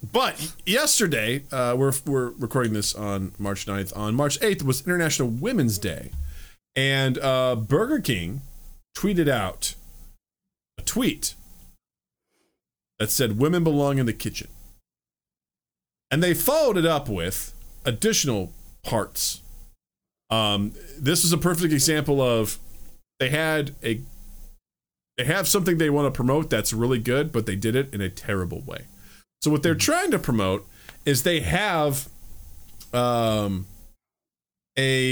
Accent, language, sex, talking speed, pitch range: American, English, male, 135 wpm, 105-150 Hz